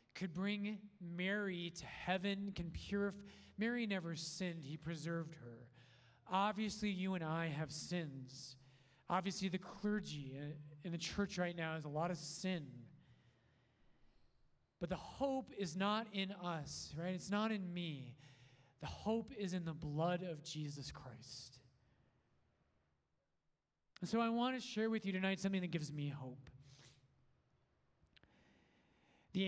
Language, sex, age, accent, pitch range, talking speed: English, male, 30-49, American, 145-195 Hz, 140 wpm